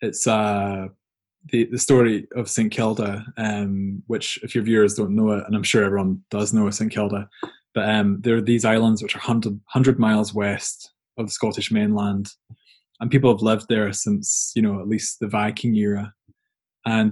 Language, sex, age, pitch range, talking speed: English, male, 20-39, 105-115 Hz, 185 wpm